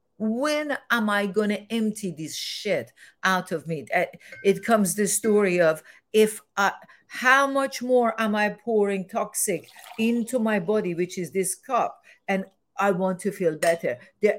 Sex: female